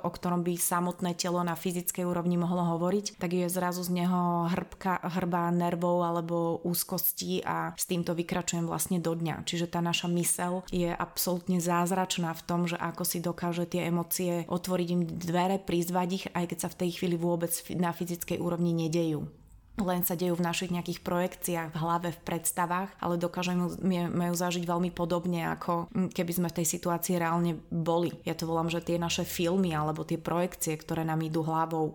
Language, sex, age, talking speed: Slovak, female, 20-39, 180 wpm